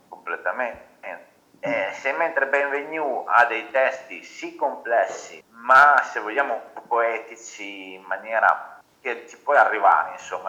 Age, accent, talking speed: 30-49, native, 115 wpm